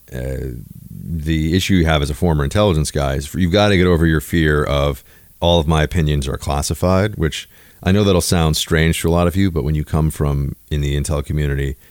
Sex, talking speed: male, 230 wpm